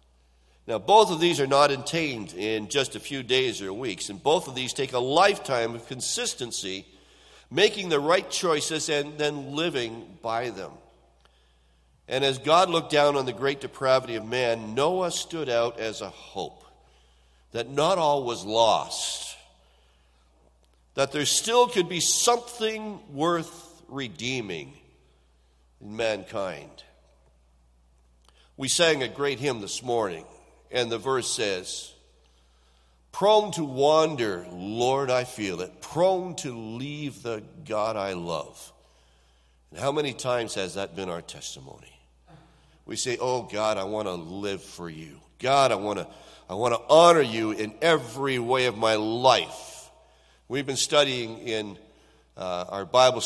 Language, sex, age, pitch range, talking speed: English, male, 60-79, 85-140 Hz, 145 wpm